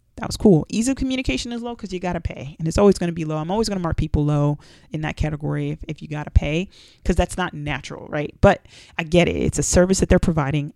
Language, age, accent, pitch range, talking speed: English, 30-49, American, 150-195 Hz, 285 wpm